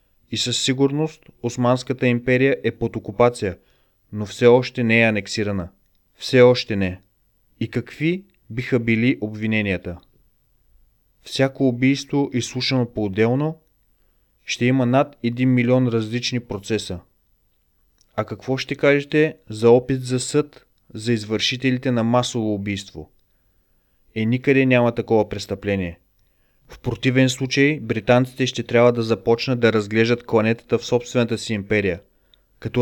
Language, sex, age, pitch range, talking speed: Bulgarian, male, 30-49, 110-125 Hz, 125 wpm